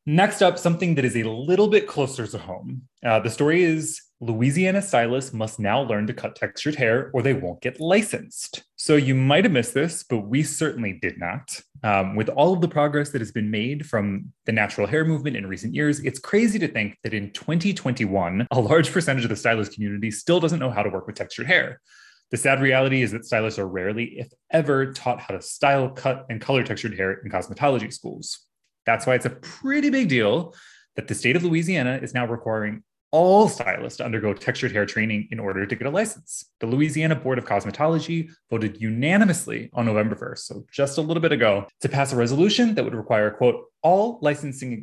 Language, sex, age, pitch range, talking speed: English, male, 20-39, 110-155 Hz, 210 wpm